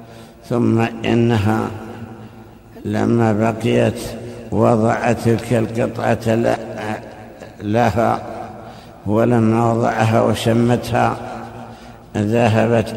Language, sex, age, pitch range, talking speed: Arabic, male, 60-79, 110-120 Hz, 55 wpm